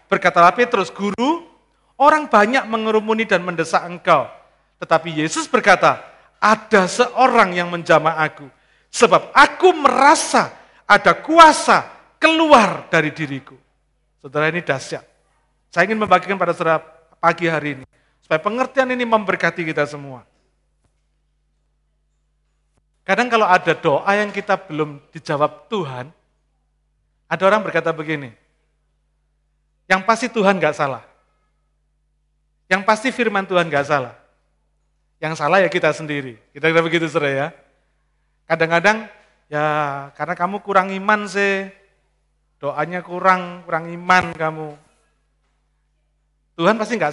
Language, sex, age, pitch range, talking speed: Malay, male, 50-69, 150-215 Hz, 115 wpm